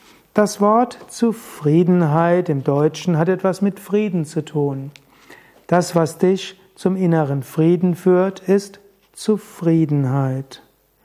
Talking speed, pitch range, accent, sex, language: 110 wpm, 160-190 Hz, German, male, German